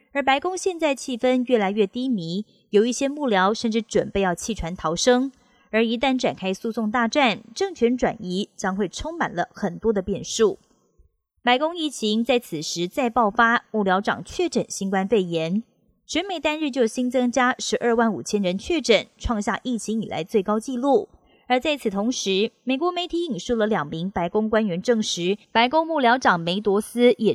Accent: native